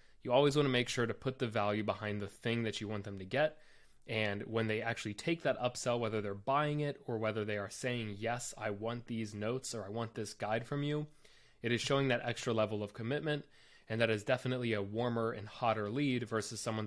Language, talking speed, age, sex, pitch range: English, 235 wpm, 20-39, male, 105-130 Hz